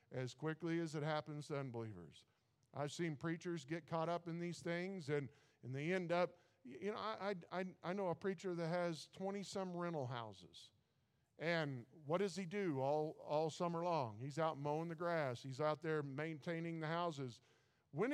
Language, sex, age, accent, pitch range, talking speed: English, male, 50-69, American, 145-195 Hz, 185 wpm